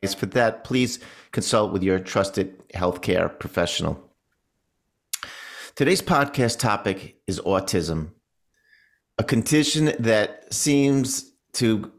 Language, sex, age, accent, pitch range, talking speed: English, male, 50-69, American, 100-120 Hz, 95 wpm